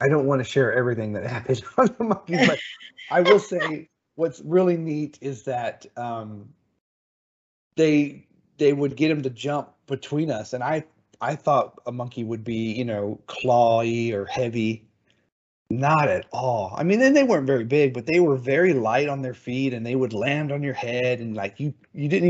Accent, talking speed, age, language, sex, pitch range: American, 195 wpm, 30-49, English, male, 115-145 Hz